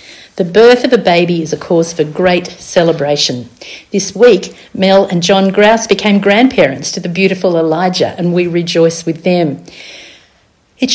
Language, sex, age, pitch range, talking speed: English, female, 50-69, 160-200 Hz, 160 wpm